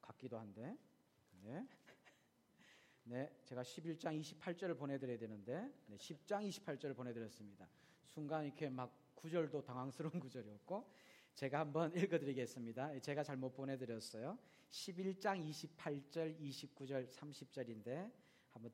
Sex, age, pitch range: male, 40-59, 130-170 Hz